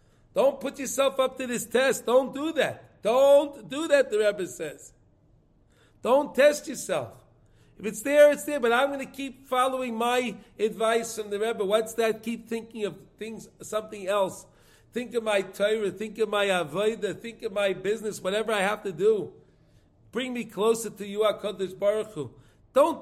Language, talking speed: English, 180 wpm